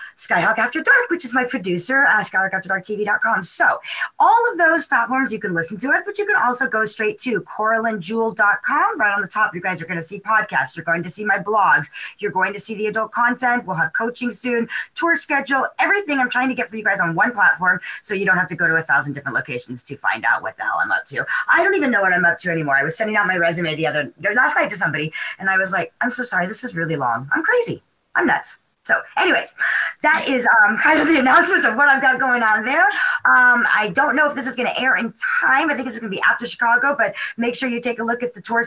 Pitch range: 185-265 Hz